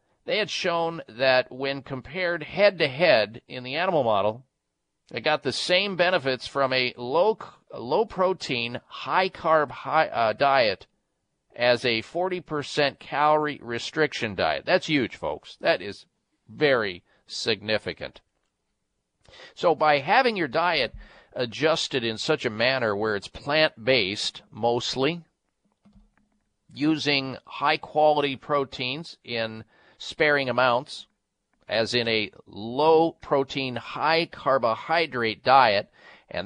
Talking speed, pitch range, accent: 120 wpm, 115-150 Hz, American